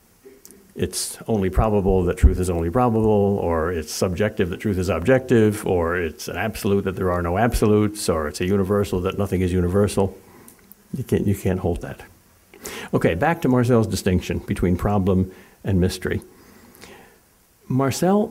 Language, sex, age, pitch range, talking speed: English, male, 60-79, 95-120 Hz, 155 wpm